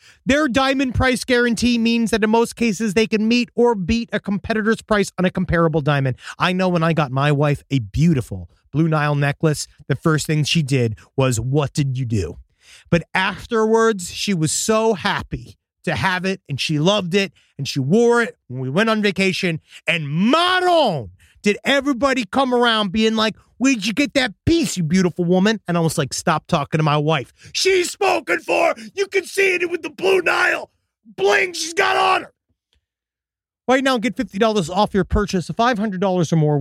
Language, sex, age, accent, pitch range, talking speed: English, male, 30-49, American, 150-230 Hz, 195 wpm